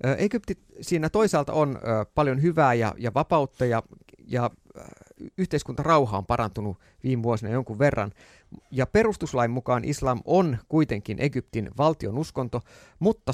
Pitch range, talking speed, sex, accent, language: 110-140 Hz, 120 wpm, male, native, Finnish